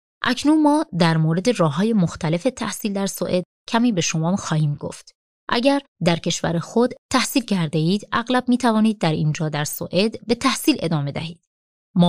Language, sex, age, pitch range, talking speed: Persian, female, 30-49, 165-225 Hz, 170 wpm